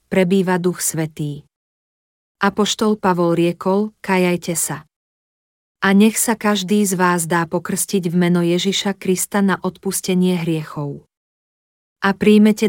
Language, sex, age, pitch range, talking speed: Slovak, female, 40-59, 175-200 Hz, 120 wpm